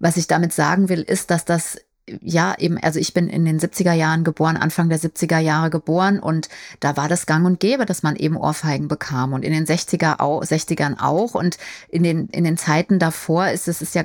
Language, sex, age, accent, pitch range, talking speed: German, female, 30-49, German, 170-205 Hz, 230 wpm